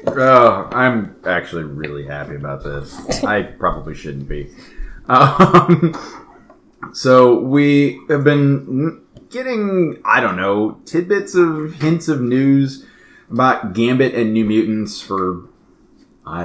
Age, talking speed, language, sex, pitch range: 30-49, 120 wpm, English, male, 90-130 Hz